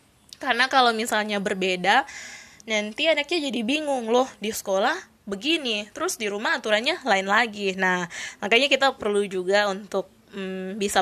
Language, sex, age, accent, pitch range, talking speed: Indonesian, female, 20-39, native, 185-225 Hz, 140 wpm